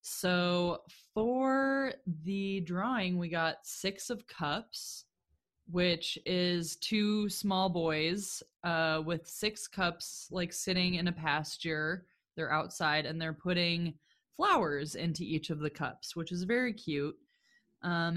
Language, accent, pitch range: English, American, 160-195 Hz